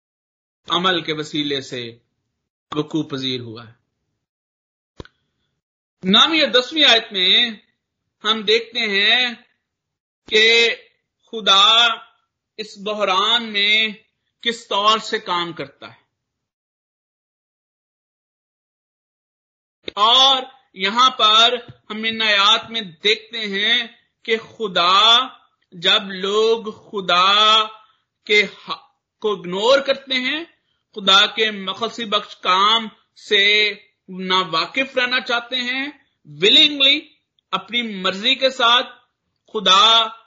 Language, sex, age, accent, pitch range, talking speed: Hindi, male, 50-69, native, 185-235 Hz, 90 wpm